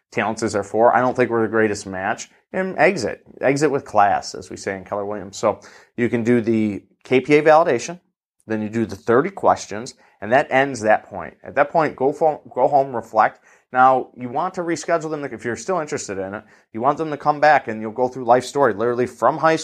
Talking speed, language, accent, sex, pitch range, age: 225 wpm, English, American, male, 110-135 Hz, 30-49